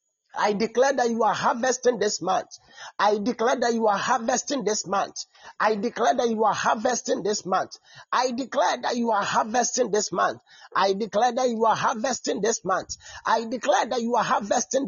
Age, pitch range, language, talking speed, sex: 50-69, 210-260 Hz, English, 185 wpm, male